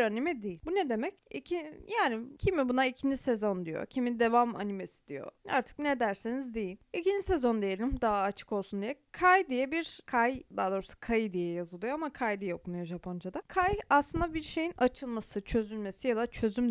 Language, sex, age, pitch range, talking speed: Turkish, female, 20-39, 215-305 Hz, 180 wpm